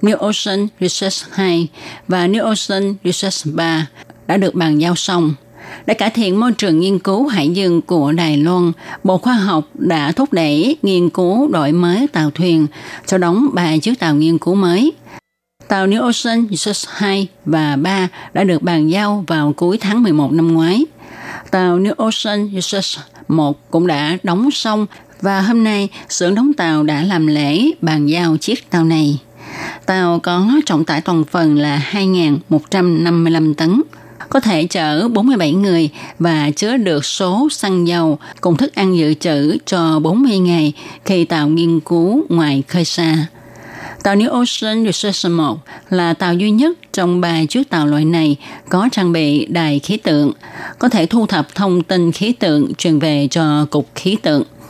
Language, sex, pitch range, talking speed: Vietnamese, female, 155-205 Hz, 170 wpm